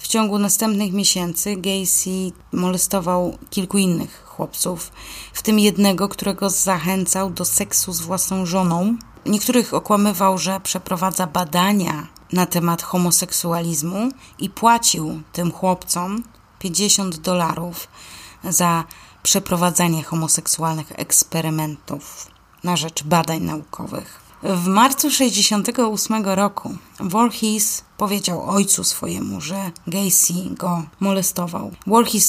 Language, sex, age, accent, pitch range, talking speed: Polish, female, 20-39, native, 175-200 Hz, 100 wpm